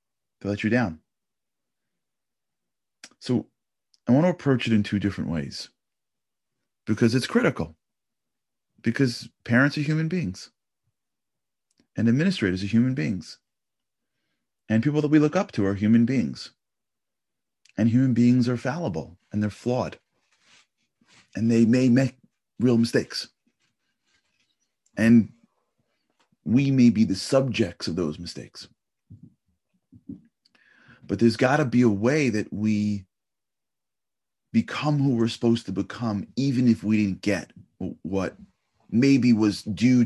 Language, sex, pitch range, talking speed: English, male, 100-125 Hz, 125 wpm